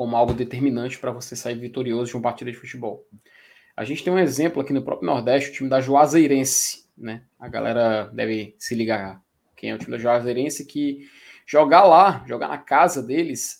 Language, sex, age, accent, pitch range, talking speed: Portuguese, male, 20-39, Brazilian, 125-180 Hz, 195 wpm